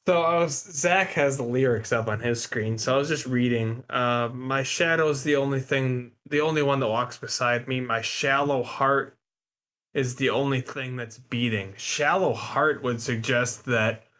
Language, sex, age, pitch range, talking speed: English, male, 20-39, 115-135 Hz, 180 wpm